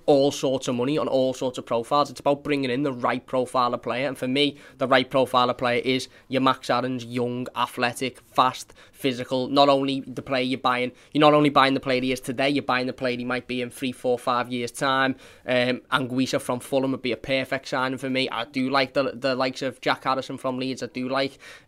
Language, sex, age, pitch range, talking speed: English, male, 20-39, 120-135 Hz, 240 wpm